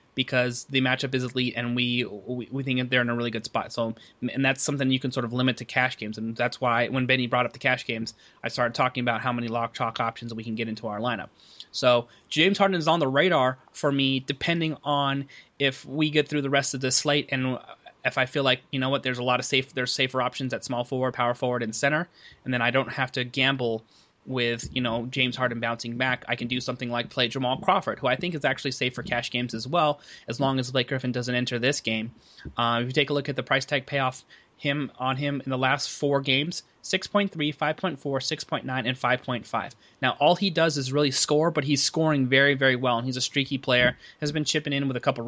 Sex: male